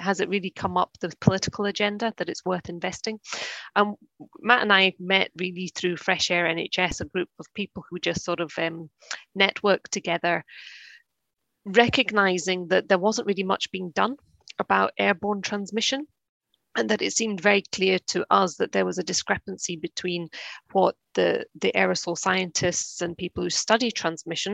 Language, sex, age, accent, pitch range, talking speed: English, female, 30-49, British, 165-200 Hz, 165 wpm